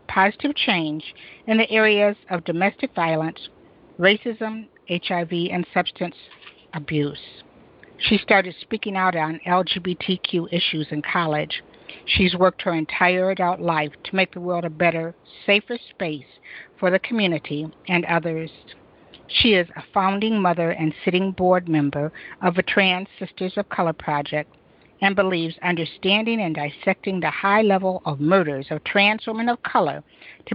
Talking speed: 145 wpm